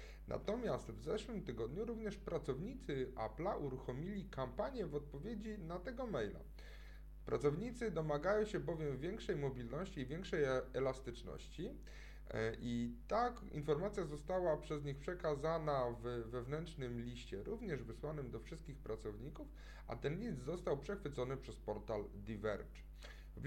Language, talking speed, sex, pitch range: Polish, 120 wpm, male, 125-180 Hz